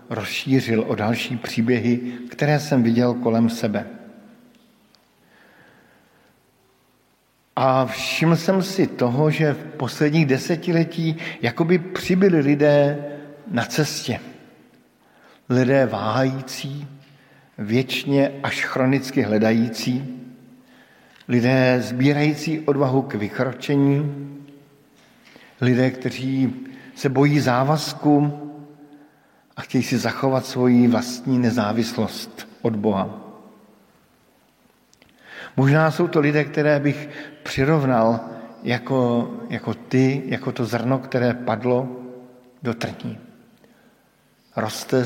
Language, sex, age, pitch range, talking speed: Slovak, male, 50-69, 125-150 Hz, 90 wpm